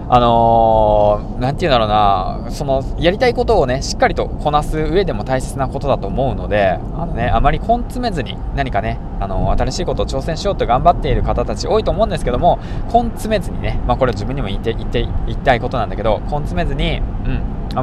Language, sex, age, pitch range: Japanese, male, 20-39, 105-135 Hz